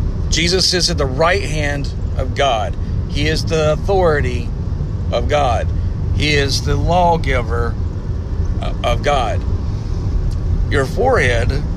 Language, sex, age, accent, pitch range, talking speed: English, male, 50-69, American, 85-95 Hz, 110 wpm